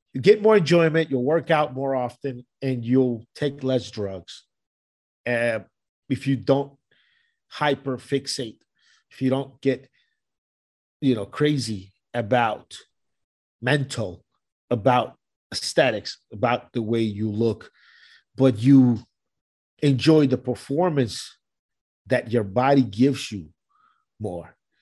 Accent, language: American, English